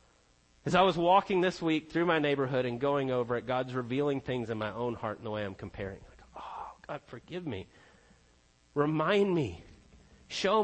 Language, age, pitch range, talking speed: English, 40-59, 105-150 Hz, 185 wpm